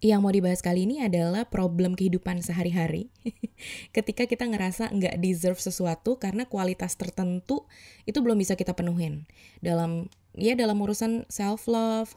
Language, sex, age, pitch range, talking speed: Indonesian, female, 20-39, 175-215 Hz, 140 wpm